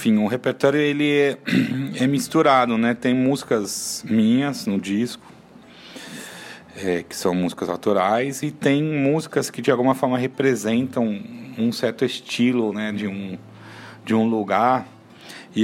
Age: 30-49